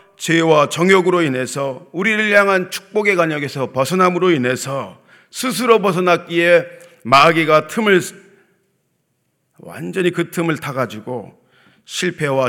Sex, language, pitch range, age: male, Korean, 145-185 Hz, 40-59